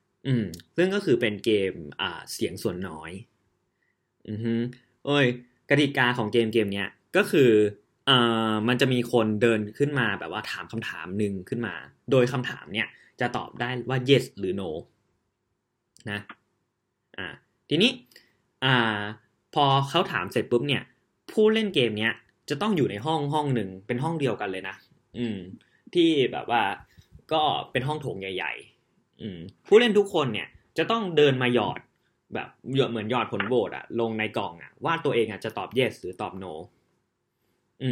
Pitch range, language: 110-145 Hz, Thai